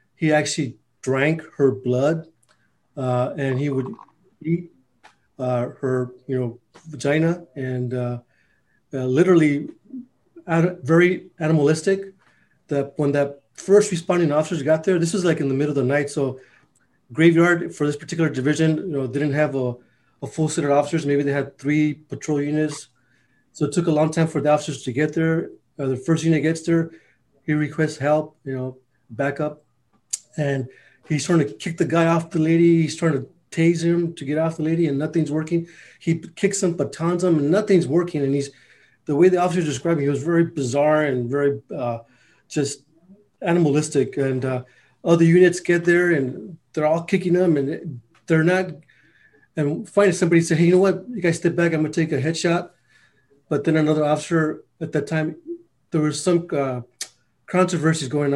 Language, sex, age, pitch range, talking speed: English, male, 30-49, 140-170 Hz, 185 wpm